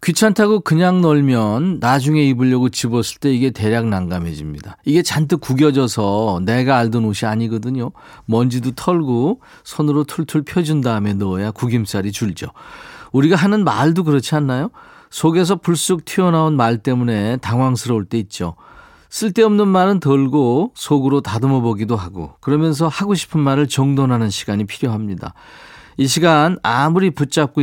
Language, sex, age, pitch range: Korean, male, 40-59, 115-160 Hz